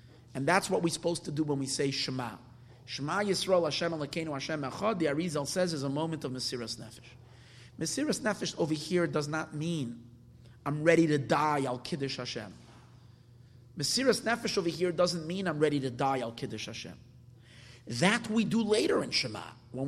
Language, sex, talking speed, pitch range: English, male, 175 wpm, 120-165 Hz